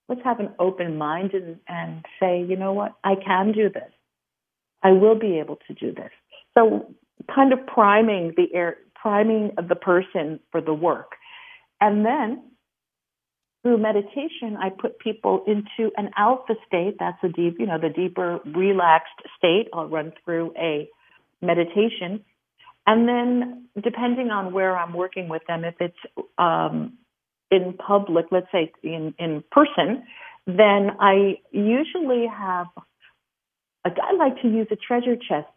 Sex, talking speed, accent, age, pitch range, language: female, 155 wpm, American, 50-69, 175-215 Hz, English